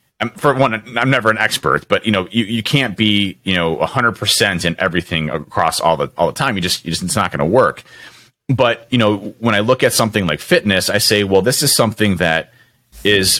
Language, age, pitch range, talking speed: English, 30-49, 85-115 Hz, 230 wpm